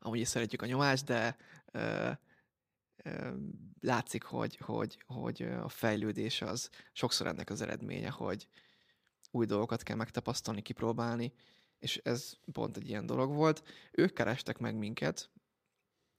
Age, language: 20-39, Hungarian